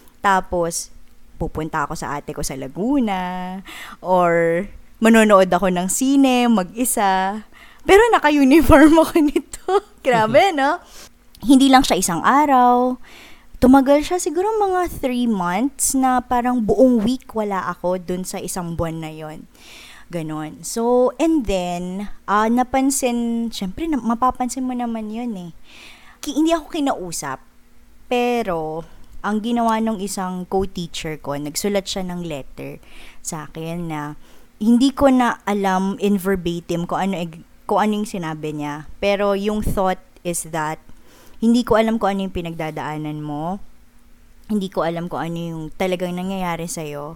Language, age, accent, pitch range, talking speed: Filipino, 20-39, native, 170-235 Hz, 135 wpm